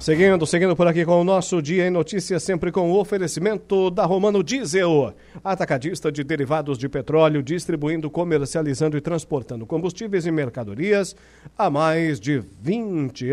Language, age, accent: Portuguese, 60-79, Brazilian